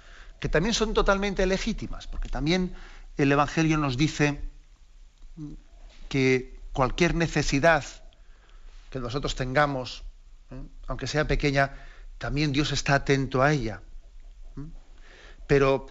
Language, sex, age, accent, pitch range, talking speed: Spanish, male, 40-59, Spanish, 130-150 Hz, 105 wpm